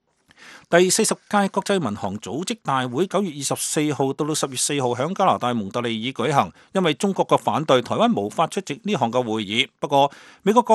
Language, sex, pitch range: English, male, 130-185 Hz